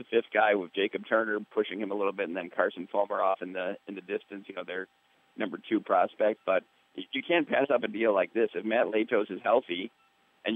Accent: American